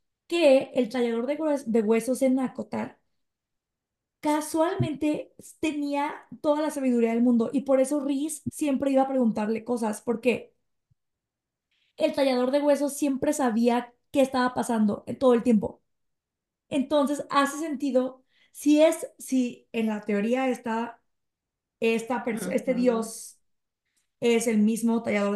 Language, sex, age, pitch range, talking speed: Spanish, female, 20-39, 230-275 Hz, 135 wpm